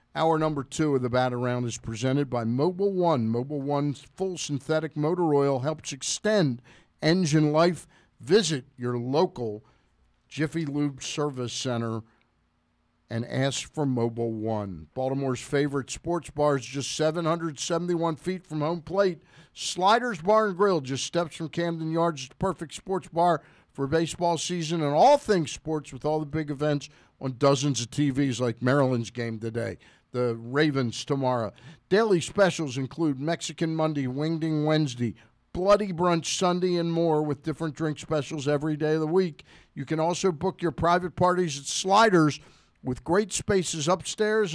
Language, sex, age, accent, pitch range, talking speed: English, male, 50-69, American, 135-175 Hz, 155 wpm